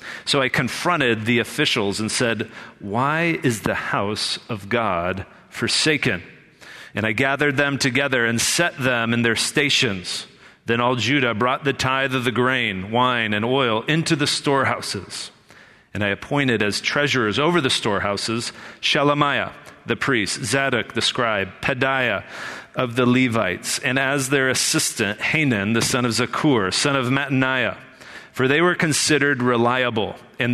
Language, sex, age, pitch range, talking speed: English, male, 40-59, 115-140 Hz, 150 wpm